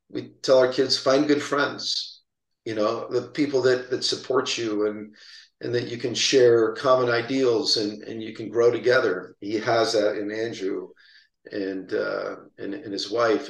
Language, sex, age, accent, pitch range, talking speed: English, male, 50-69, American, 115-150 Hz, 180 wpm